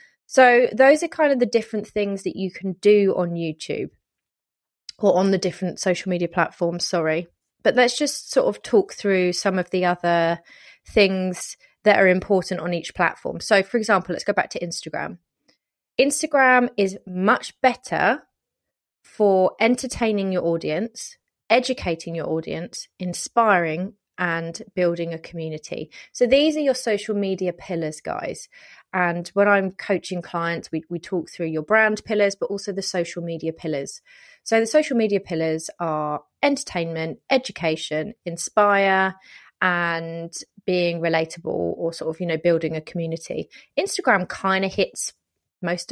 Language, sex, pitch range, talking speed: English, female, 170-215 Hz, 150 wpm